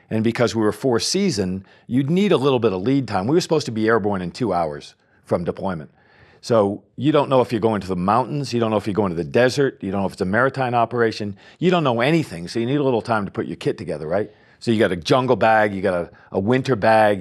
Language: English